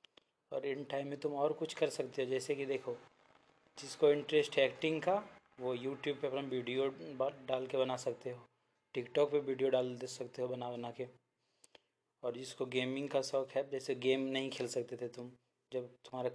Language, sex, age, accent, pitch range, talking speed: Hindi, male, 20-39, native, 125-140 Hz, 195 wpm